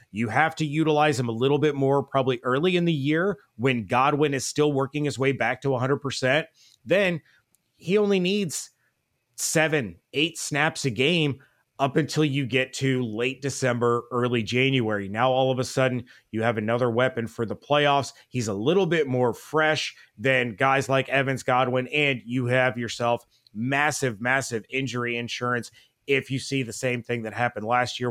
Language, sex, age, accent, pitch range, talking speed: English, male, 30-49, American, 120-140 Hz, 175 wpm